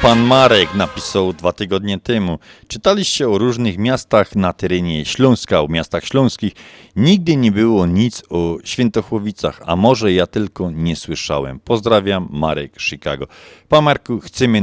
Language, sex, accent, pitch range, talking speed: Polish, male, native, 80-115 Hz, 140 wpm